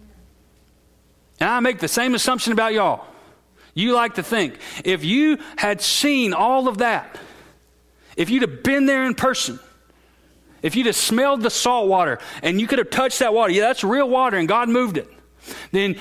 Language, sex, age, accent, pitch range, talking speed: English, male, 40-59, American, 170-235 Hz, 185 wpm